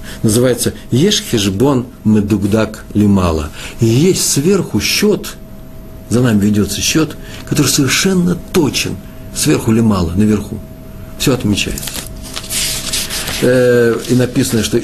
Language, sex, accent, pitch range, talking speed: Russian, male, native, 95-130 Hz, 100 wpm